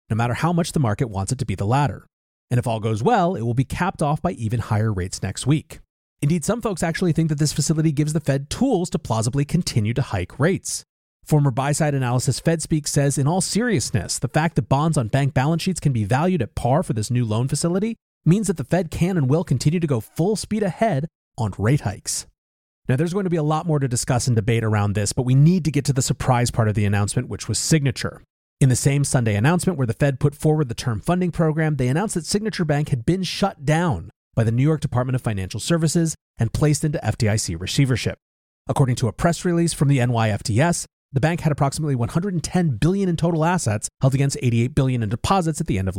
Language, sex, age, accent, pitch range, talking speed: English, male, 30-49, American, 115-160 Hz, 235 wpm